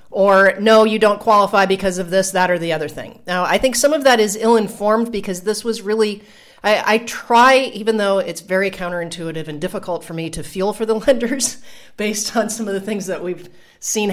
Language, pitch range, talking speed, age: English, 180-225 Hz, 215 wpm, 40-59